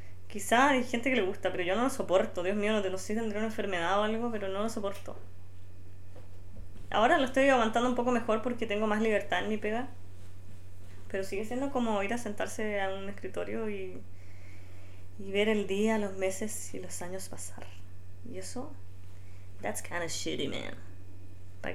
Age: 20-39